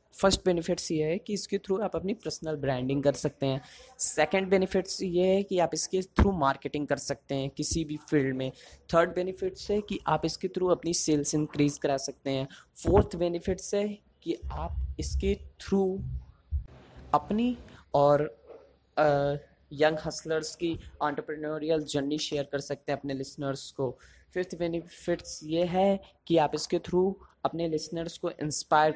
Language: Hindi